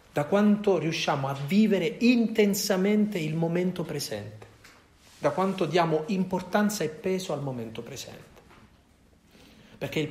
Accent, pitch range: native, 110-165 Hz